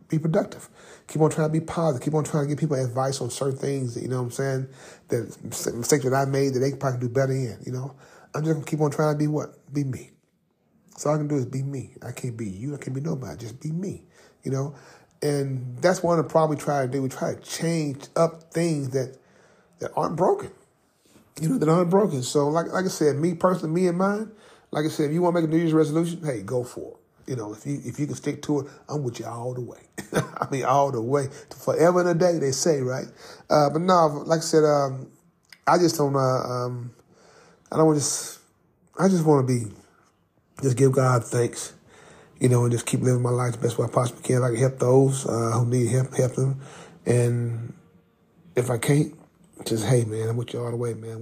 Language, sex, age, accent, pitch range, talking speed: English, male, 40-59, American, 125-155 Hz, 250 wpm